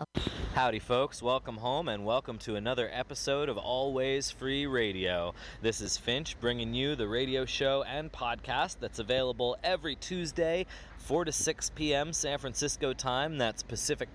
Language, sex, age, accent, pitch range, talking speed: English, male, 30-49, American, 120-145 Hz, 155 wpm